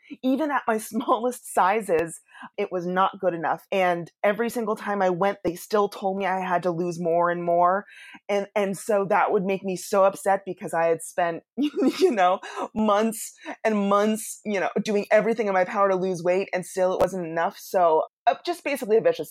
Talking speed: 205 wpm